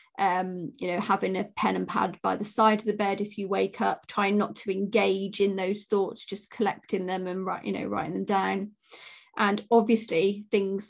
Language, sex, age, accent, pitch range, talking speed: English, female, 30-49, British, 195-230 Hz, 210 wpm